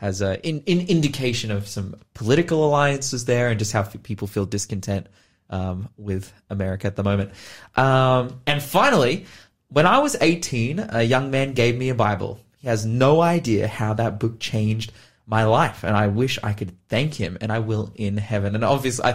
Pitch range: 110-140 Hz